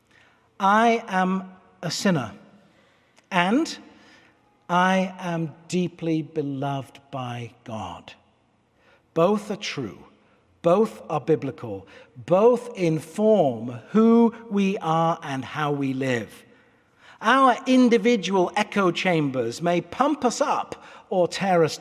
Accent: British